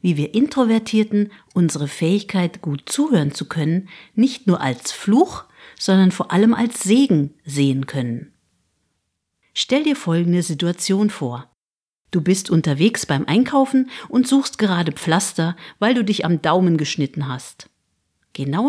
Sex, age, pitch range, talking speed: female, 50-69, 140-220 Hz, 135 wpm